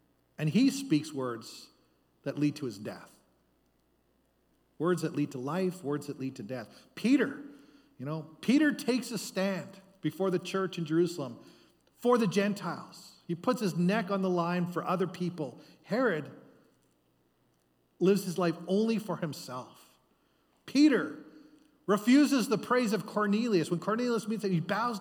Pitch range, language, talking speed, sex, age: 145-205 Hz, English, 150 wpm, male, 40-59